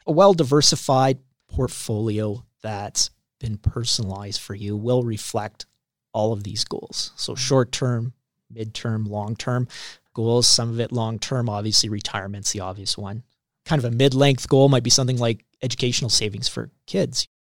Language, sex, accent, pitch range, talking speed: English, male, American, 110-135 Hz, 140 wpm